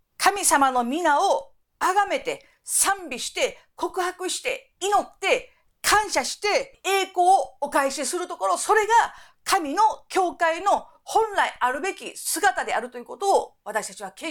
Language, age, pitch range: Japanese, 50-69, 270-390 Hz